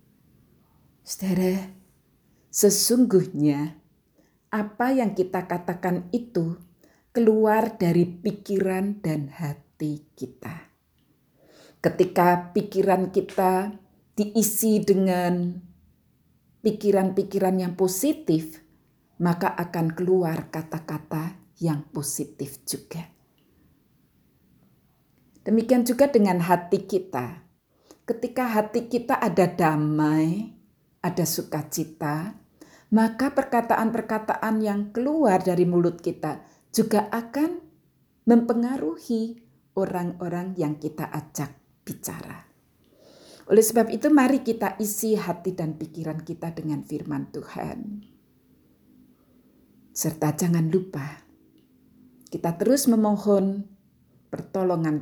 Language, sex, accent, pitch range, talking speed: Indonesian, female, native, 165-220 Hz, 80 wpm